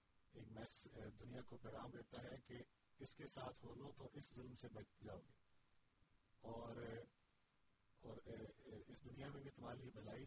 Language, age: Urdu, 40-59